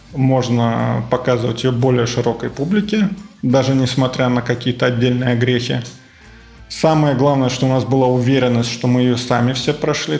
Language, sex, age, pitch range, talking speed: Russian, male, 20-39, 125-150 Hz, 145 wpm